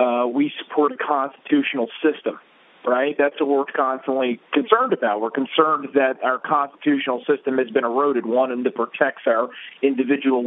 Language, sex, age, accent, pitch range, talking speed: English, male, 40-59, American, 130-160 Hz, 160 wpm